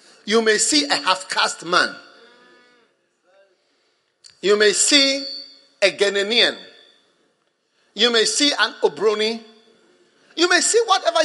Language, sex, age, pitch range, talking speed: English, male, 50-69, 245-405 Hz, 105 wpm